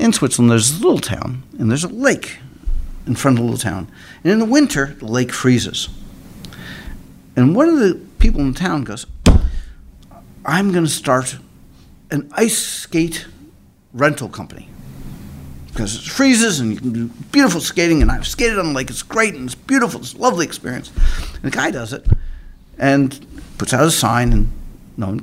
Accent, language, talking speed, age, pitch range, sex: American, English, 185 wpm, 50-69, 95-160 Hz, male